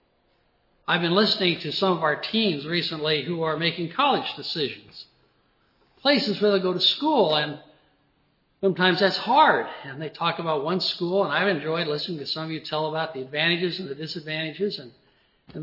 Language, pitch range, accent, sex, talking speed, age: English, 155-195 Hz, American, male, 180 wpm, 60-79